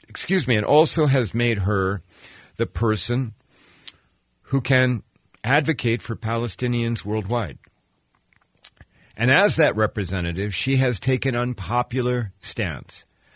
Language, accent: English, American